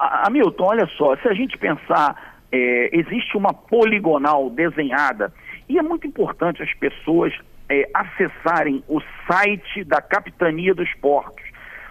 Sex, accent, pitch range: male, Brazilian, 150-200 Hz